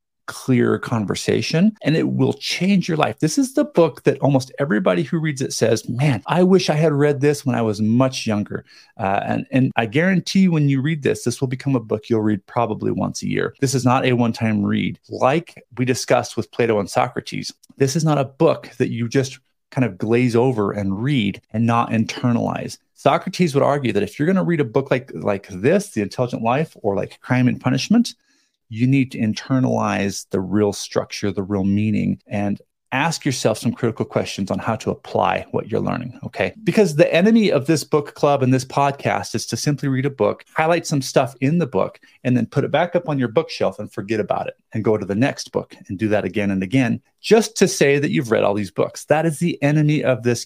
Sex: male